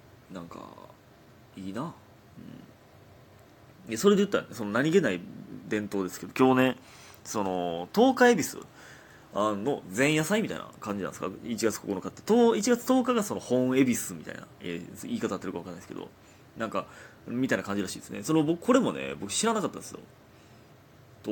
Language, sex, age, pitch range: Japanese, male, 30-49, 95-130 Hz